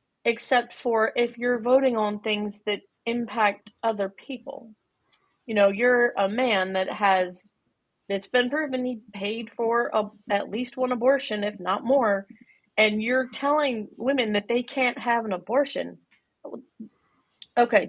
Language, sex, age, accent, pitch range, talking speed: English, female, 30-49, American, 200-250 Hz, 140 wpm